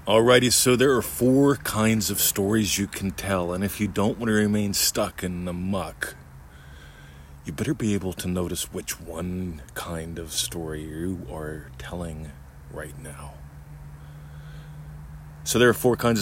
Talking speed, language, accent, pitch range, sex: 160 wpm, English, American, 75-95 Hz, male